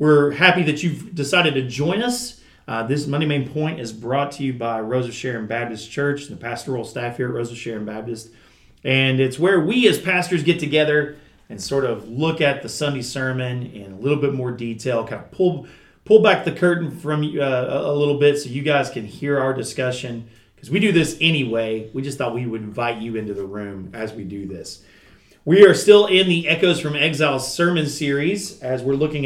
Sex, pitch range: male, 125-165 Hz